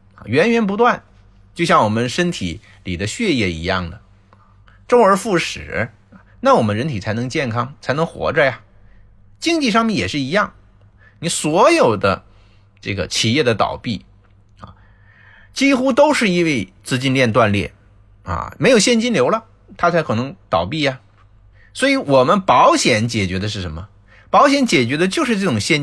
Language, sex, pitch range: Chinese, male, 100-150 Hz